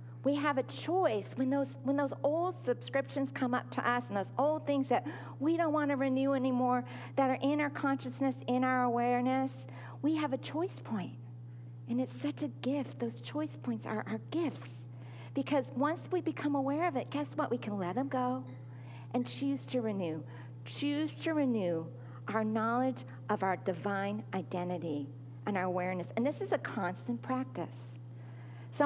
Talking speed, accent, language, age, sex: 180 wpm, American, English, 50-69, female